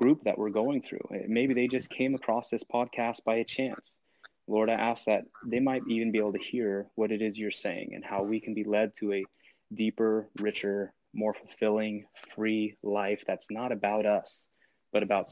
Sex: male